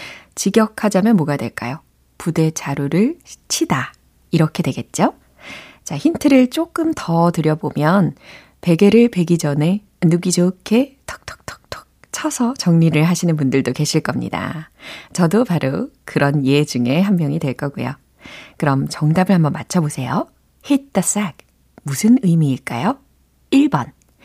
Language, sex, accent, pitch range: Korean, female, native, 165-240 Hz